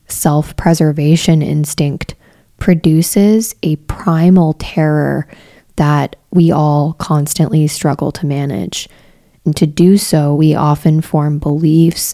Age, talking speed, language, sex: 20-39, 105 wpm, English, female